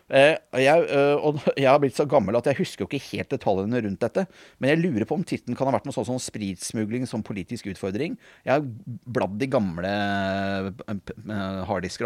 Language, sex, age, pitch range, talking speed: English, male, 30-49, 100-125 Hz, 195 wpm